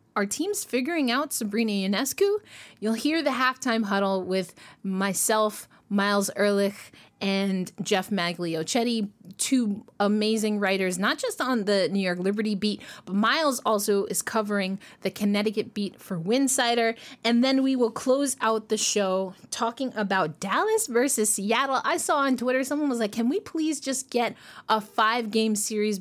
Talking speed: 155 wpm